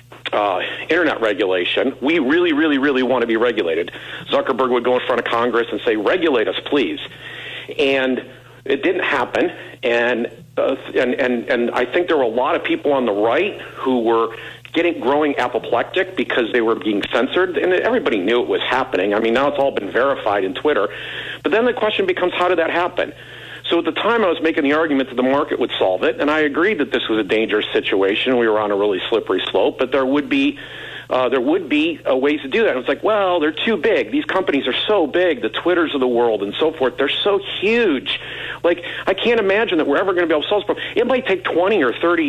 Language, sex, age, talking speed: English, male, 50-69, 235 wpm